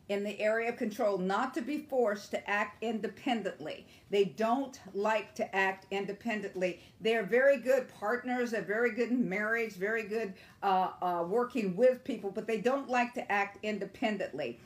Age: 50-69